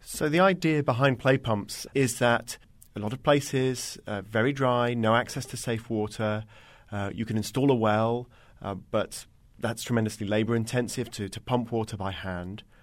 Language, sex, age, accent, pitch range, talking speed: English, male, 40-59, British, 100-125 Hz, 175 wpm